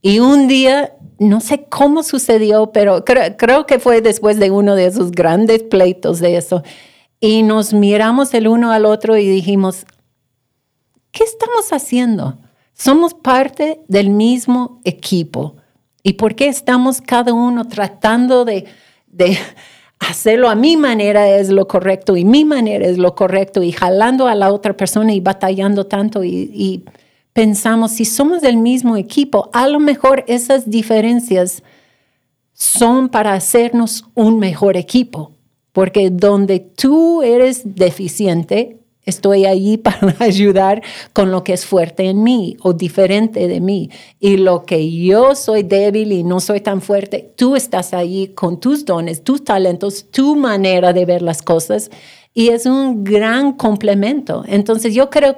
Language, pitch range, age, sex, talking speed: Spanish, 185-240 Hz, 50-69, female, 155 wpm